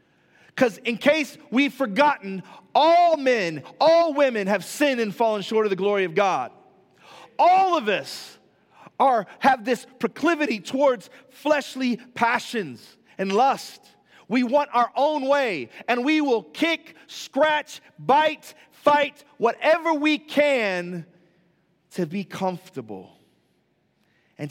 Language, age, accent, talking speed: English, 40-59, American, 120 wpm